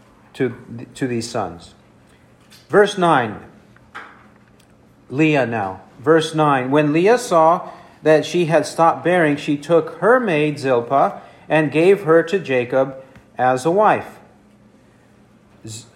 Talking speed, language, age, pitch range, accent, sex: 120 wpm, English, 50-69, 150-180 Hz, American, male